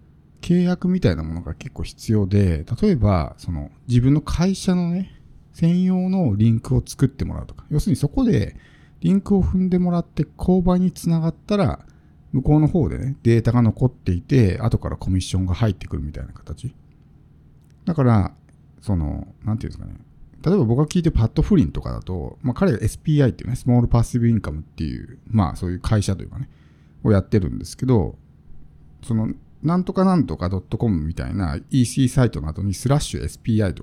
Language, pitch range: Japanese, 85-140 Hz